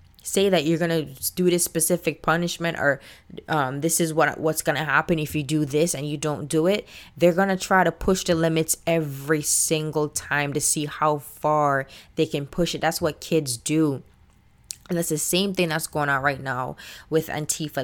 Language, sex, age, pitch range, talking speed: English, female, 20-39, 145-165 Hz, 210 wpm